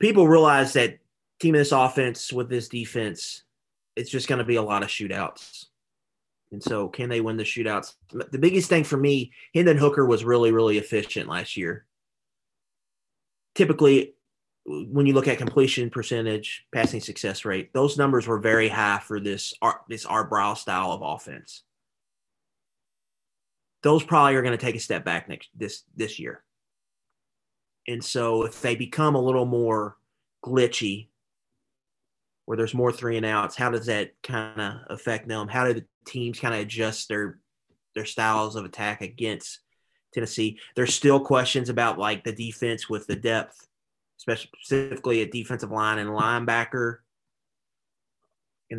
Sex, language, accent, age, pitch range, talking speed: male, English, American, 30-49, 110-130 Hz, 155 wpm